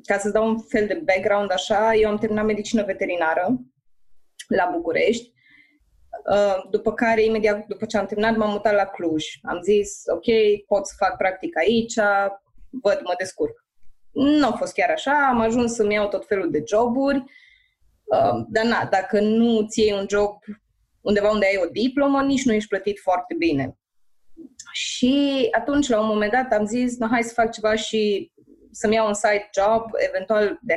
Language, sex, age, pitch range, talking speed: Romanian, female, 20-39, 205-265 Hz, 175 wpm